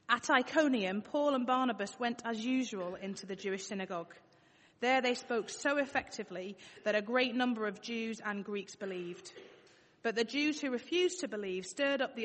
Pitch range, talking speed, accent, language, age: 190-235 Hz, 175 wpm, British, English, 30-49